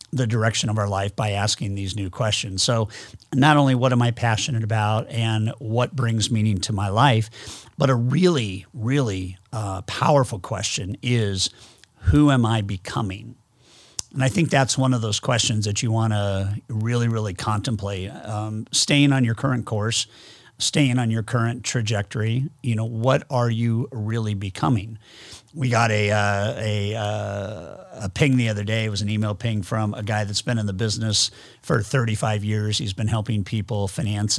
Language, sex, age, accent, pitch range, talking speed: English, male, 50-69, American, 105-125 Hz, 180 wpm